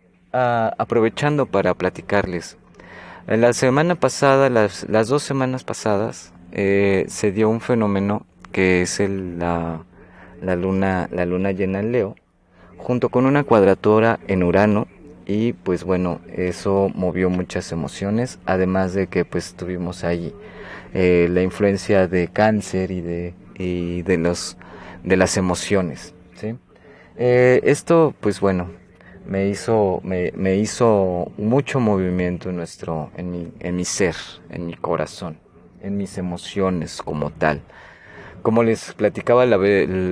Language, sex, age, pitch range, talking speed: Spanish, male, 30-49, 90-110 Hz, 135 wpm